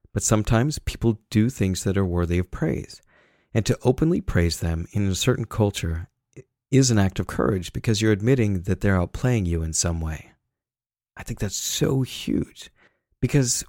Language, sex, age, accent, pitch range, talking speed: English, male, 50-69, American, 90-115 Hz, 175 wpm